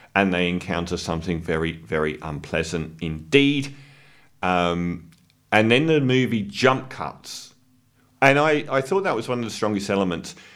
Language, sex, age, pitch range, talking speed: English, male, 40-59, 90-120 Hz, 150 wpm